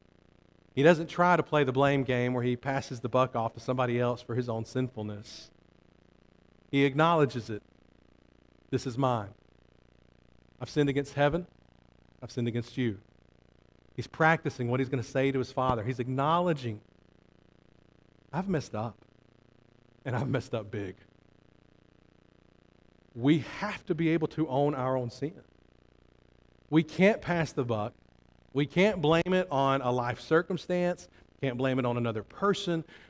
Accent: American